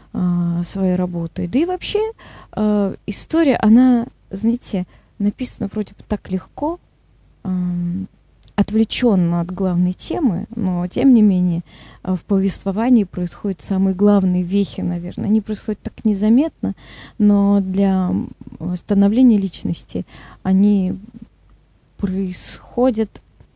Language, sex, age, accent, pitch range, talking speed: Russian, female, 20-39, native, 180-215 Hz, 105 wpm